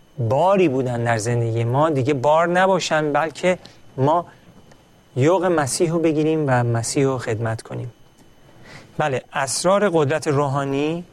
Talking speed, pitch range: 125 wpm, 125-160 Hz